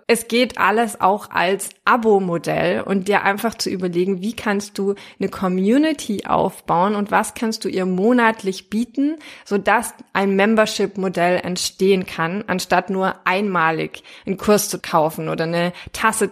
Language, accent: German, German